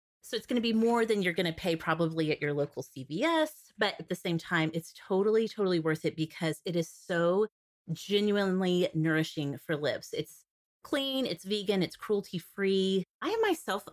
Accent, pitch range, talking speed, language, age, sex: American, 160-220 Hz, 185 wpm, English, 30-49, female